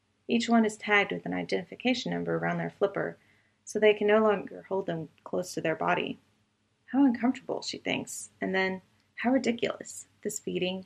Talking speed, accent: 175 wpm, American